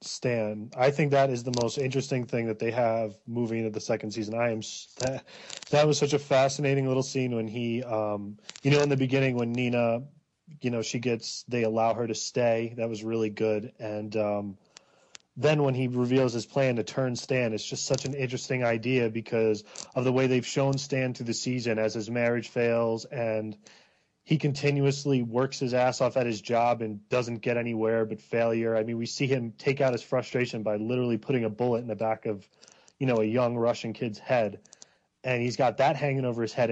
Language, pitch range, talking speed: English, 110-135 Hz, 210 wpm